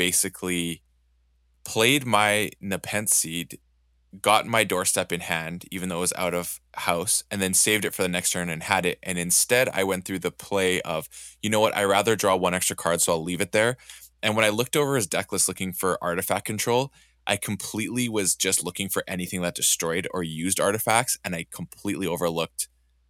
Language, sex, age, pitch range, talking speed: English, male, 20-39, 85-95 Hz, 205 wpm